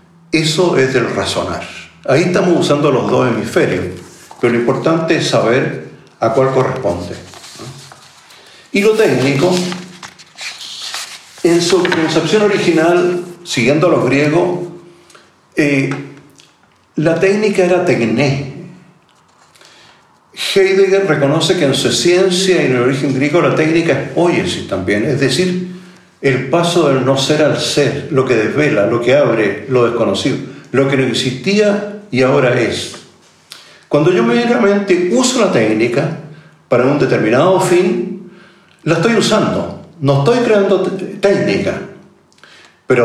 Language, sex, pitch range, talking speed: Spanish, male, 140-185 Hz, 130 wpm